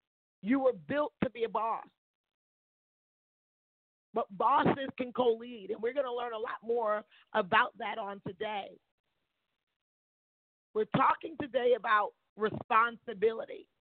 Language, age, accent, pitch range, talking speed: English, 40-59, American, 180-230 Hz, 120 wpm